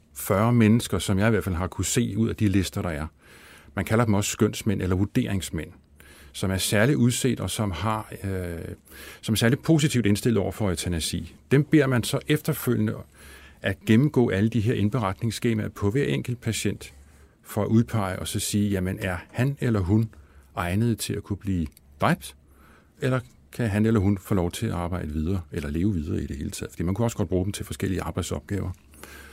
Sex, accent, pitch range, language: male, native, 85-115 Hz, Danish